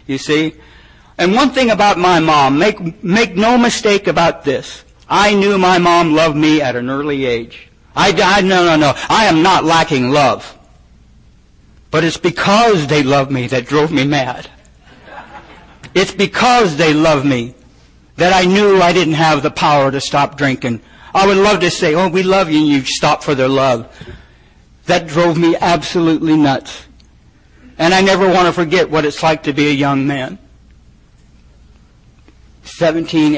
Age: 60-79